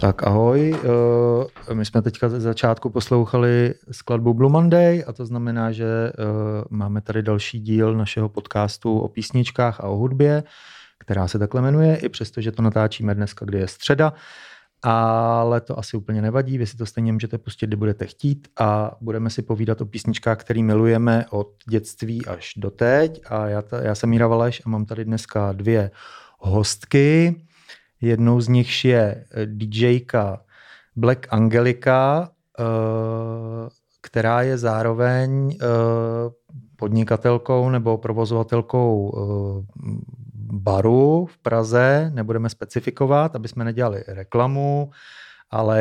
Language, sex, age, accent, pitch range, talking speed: Czech, male, 30-49, native, 110-125 Hz, 130 wpm